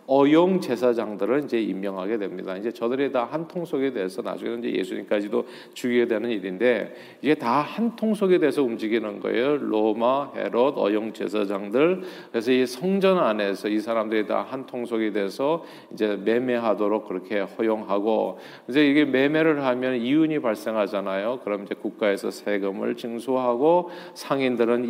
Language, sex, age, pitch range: Korean, male, 40-59, 115-160 Hz